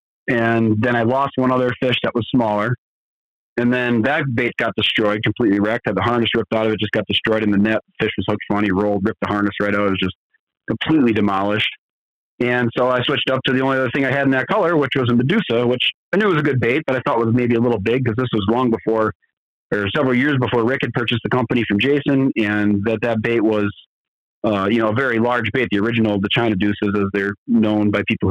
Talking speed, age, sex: 255 wpm, 40-59, male